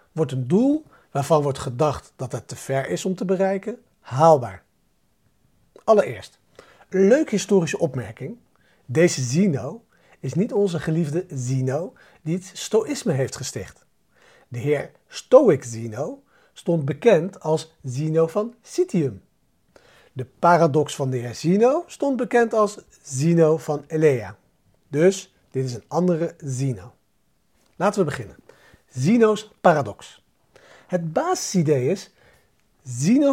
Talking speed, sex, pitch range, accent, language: 120 wpm, male, 135-205 Hz, Dutch, Dutch